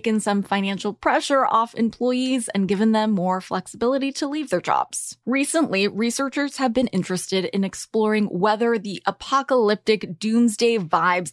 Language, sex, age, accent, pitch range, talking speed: English, female, 20-39, American, 195-270 Hz, 145 wpm